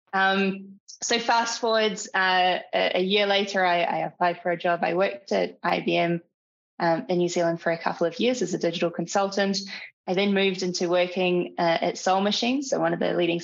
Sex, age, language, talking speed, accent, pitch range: female, 20-39, English, 200 wpm, Australian, 175-200 Hz